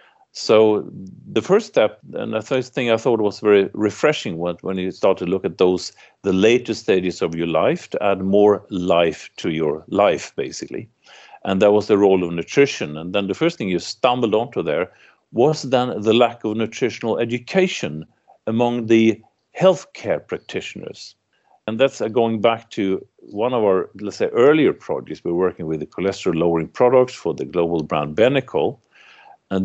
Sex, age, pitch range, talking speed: male, 50-69, 90-120 Hz, 175 wpm